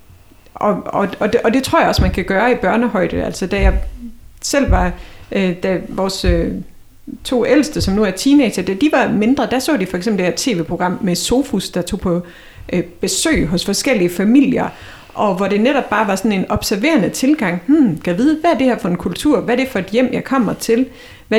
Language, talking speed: Danish, 225 wpm